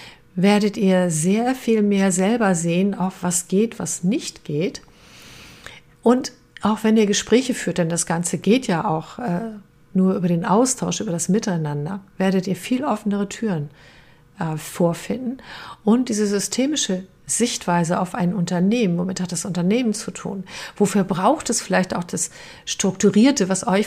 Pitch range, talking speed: 180-215 Hz, 155 wpm